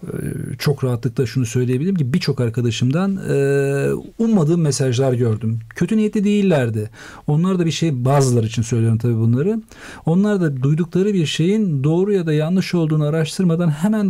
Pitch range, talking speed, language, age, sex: 125-165 Hz, 145 wpm, Turkish, 50-69, male